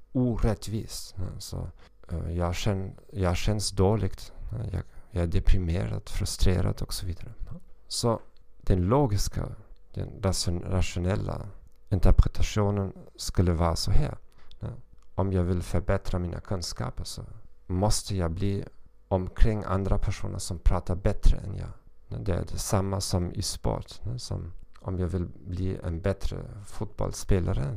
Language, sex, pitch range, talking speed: Swedish, male, 90-110 Hz, 120 wpm